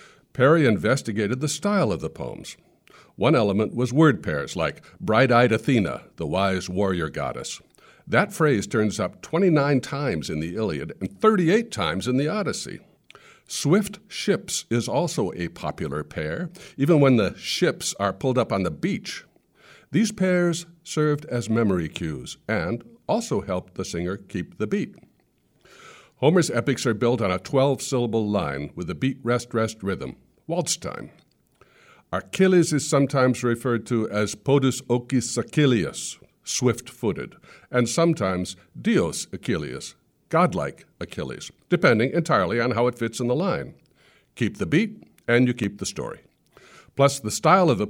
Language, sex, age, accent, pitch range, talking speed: English, male, 60-79, American, 105-155 Hz, 150 wpm